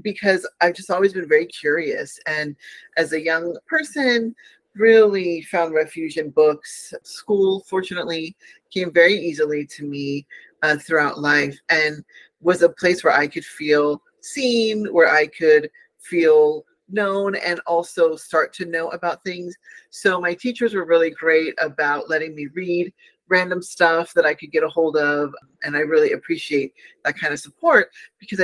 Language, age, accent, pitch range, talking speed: English, 40-59, American, 160-210 Hz, 160 wpm